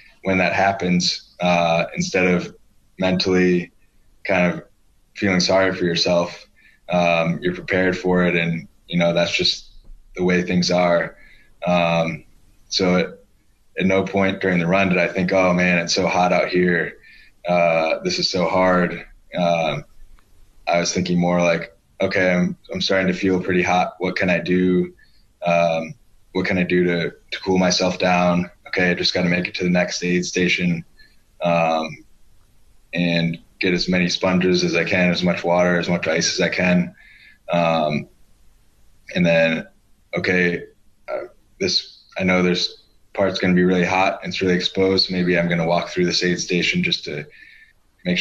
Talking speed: 175 wpm